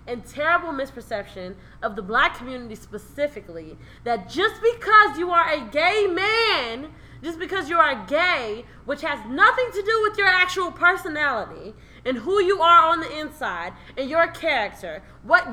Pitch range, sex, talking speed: 265-370 Hz, female, 160 wpm